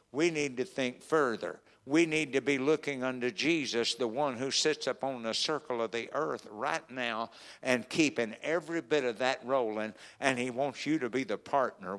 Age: 60-79